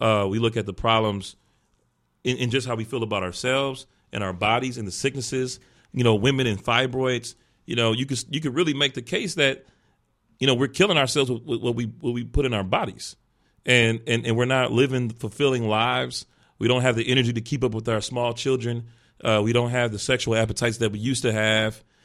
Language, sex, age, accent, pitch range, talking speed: English, male, 40-59, American, 105-130 Hz, 225 wpm